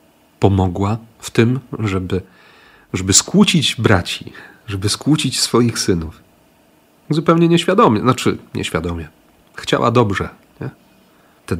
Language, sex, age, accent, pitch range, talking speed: Polish, male, 40-59, native, 95-120 Hz, 95 wpm